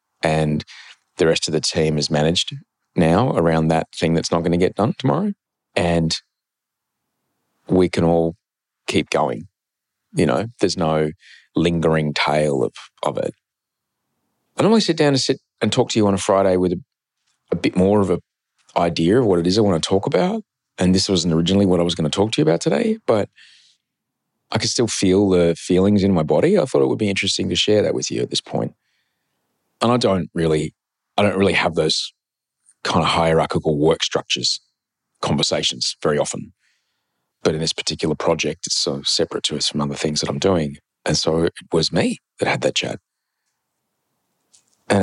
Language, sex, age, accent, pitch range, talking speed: English, male, 30-49, Australian, 80-120 Hz, 195 wpm